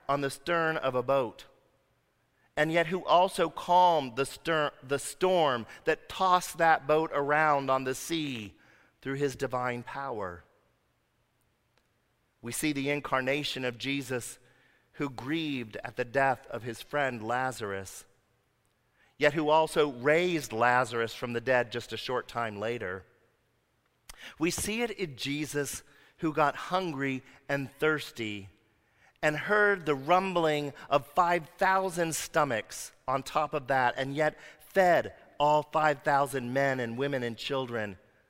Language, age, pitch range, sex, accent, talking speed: English, 40-59, 120-155 Hz, male, American, 135 wpm